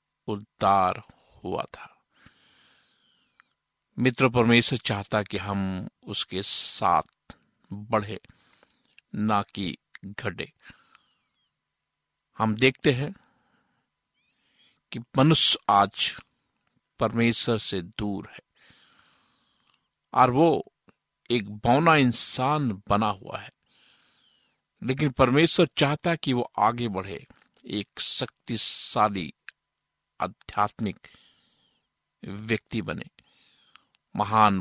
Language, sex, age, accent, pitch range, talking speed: Hindi, male, 50-69, native, 105-135 Hz, 80 wpm